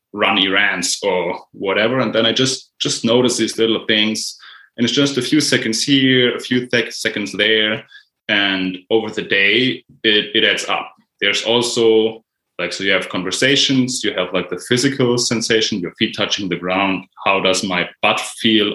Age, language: 20-39, English